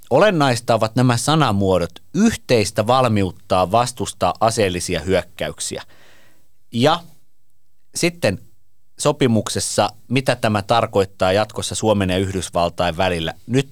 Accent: native